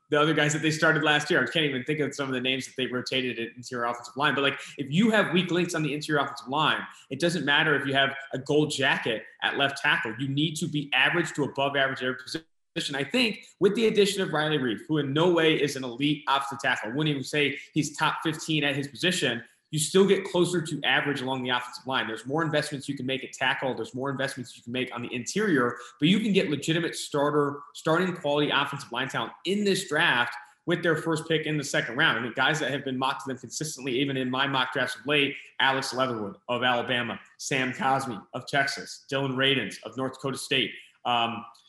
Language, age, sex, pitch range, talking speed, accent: English, 20-39, male, 130-160 Hz, 235 wpm, American